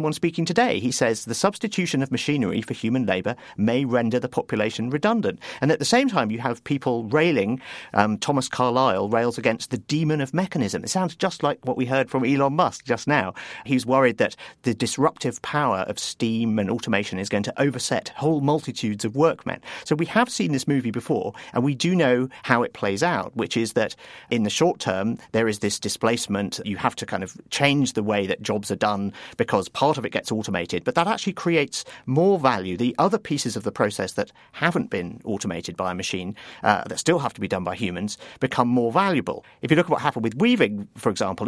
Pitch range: 110-155 Hz